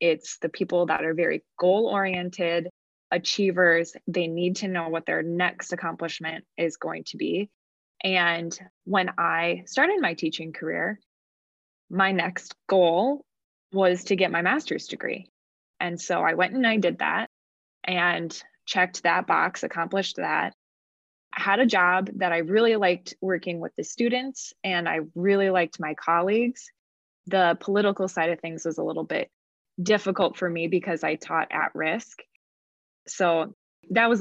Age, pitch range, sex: 20-39, 170-200 Hz, female